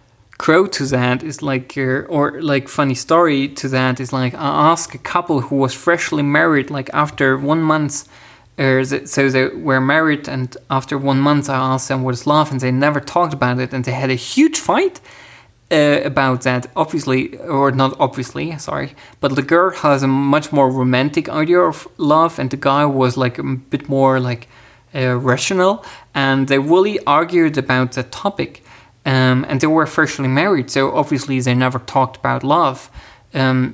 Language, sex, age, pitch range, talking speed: English, male, 20-39, 130-155 Hz, 185 wpm